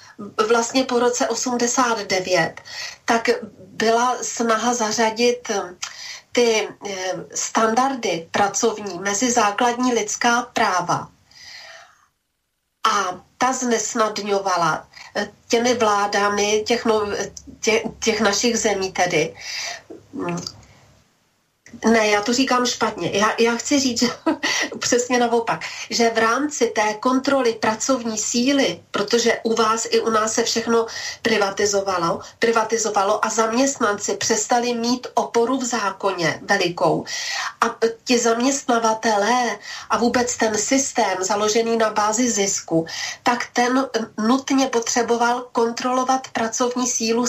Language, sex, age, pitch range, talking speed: Slovak, female, 40-59, 210-245 Hz, 100 wpm